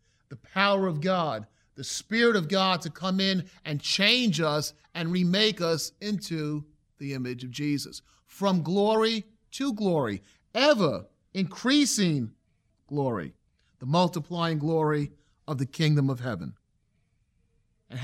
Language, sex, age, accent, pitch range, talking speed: English, male, 40-59, American, 115-165 Hz, 125 wpm